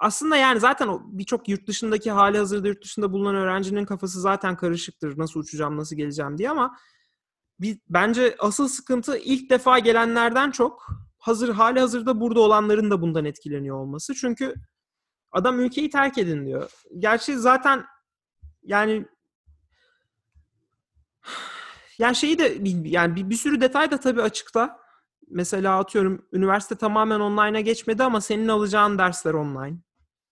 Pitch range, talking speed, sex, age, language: 175-240 Hz, 135 wpm, male, 30-49, Turkish